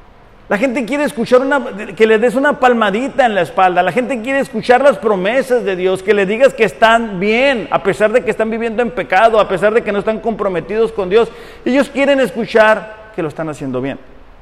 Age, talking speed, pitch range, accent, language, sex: 50-69, 215 wpm, 175-225 Hz, Mexican, Spanish, male